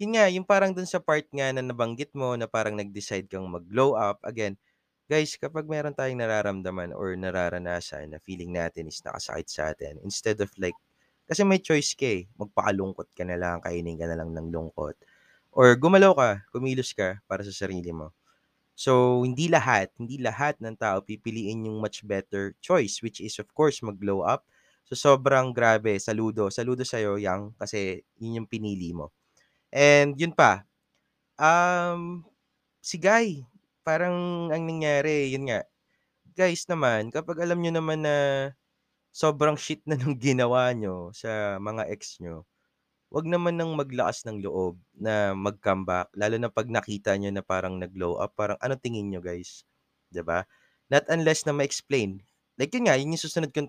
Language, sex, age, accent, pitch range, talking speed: Filipino, male, 20-39, native, 95-150 Hz, 170 wpm